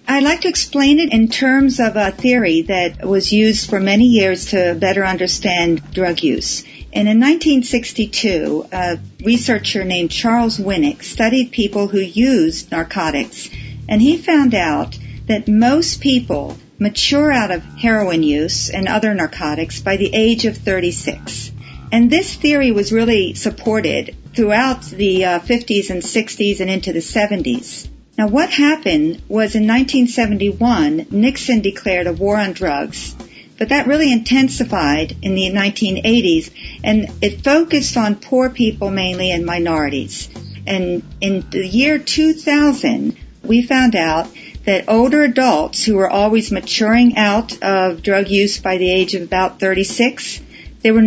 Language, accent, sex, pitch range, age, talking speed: English, American, female, 190-250 Hz, 50-69, 145 wpm